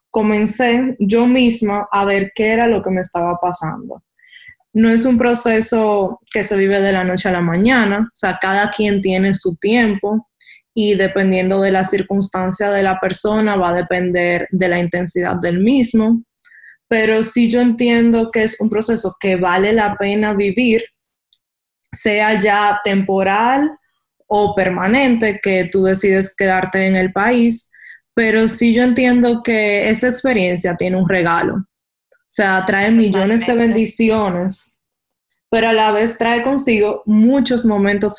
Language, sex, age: Spanish, female, 20-39